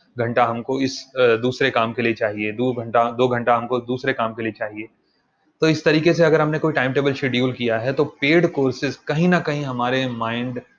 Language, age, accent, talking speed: Hindi, 30-49, native, 215 wpm